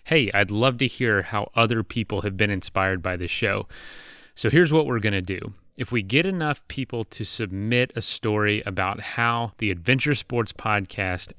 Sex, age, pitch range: male, 30-49, 100-125 Hz